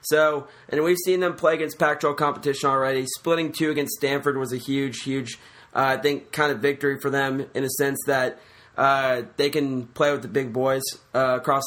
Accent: American